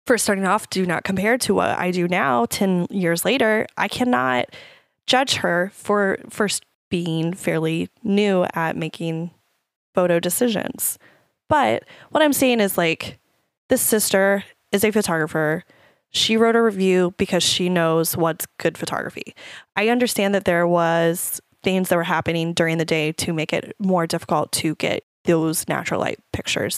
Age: 10-29